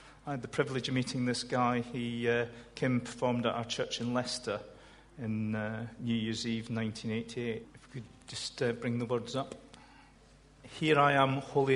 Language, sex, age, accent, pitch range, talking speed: English, male, 40-59, British, 115-140 Hz, 185 wpm